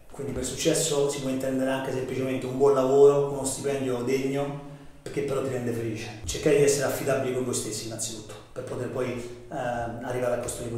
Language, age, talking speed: Italian, 30-49, 195 wpm